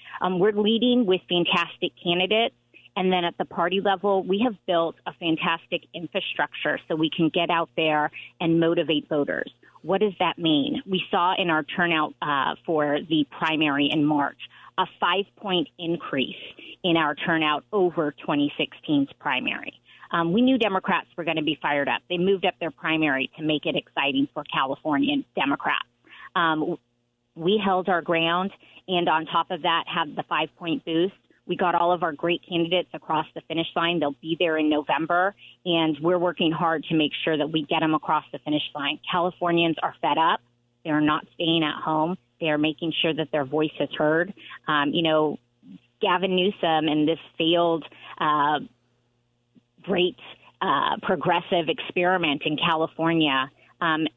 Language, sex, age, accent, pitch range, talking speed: English, female, 30-49, American, 155-180 Hz, 170 wpm